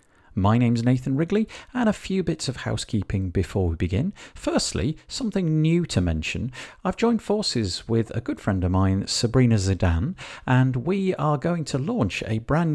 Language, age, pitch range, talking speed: English, 50-69, 95-150 Hz, 175 wpm